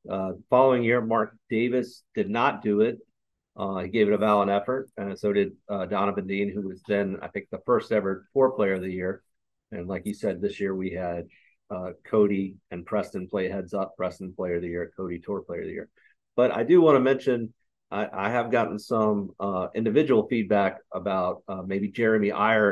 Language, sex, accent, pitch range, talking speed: English, male, American, 95-110 Hz, 210 wpm